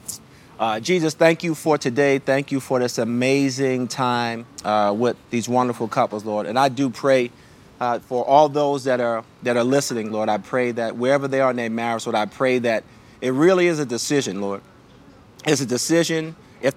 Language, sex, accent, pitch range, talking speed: English, male, American, 120-140 Hz, 195 wpm